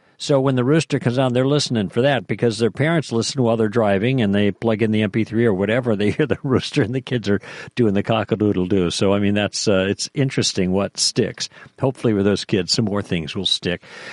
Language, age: English, 50-69